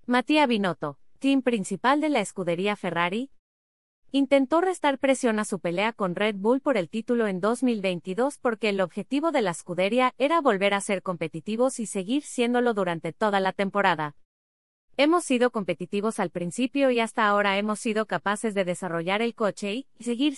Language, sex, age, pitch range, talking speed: Spanish, female, 30-49, 190-255 Hz, 170 wpm